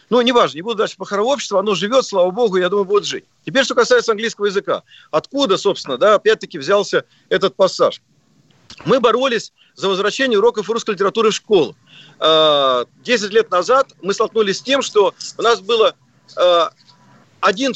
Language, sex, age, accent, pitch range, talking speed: Russian, male, 40-59, native, 200-265 Hz, 165 wpm